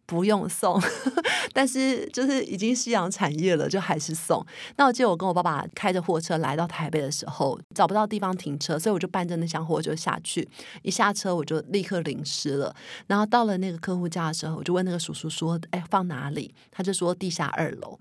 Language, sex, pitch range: Chinese, female, 160-195 Hz